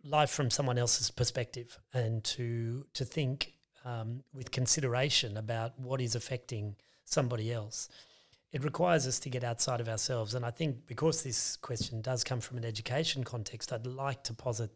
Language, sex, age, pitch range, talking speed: English, male, 30-49, 115-135 Hz, 170 wpm